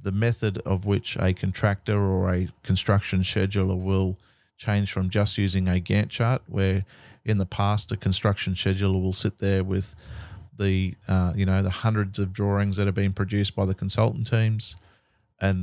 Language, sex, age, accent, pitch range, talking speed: English, male, 30-49, Australian, 95-110 Hz, 175 wpm